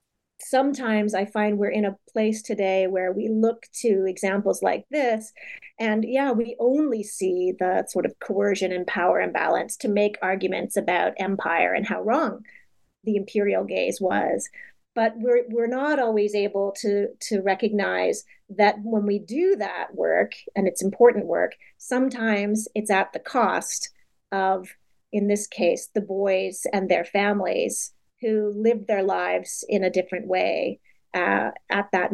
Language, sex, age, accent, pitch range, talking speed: English, female, 30-49, American, 195-235 Hz, 155 wpm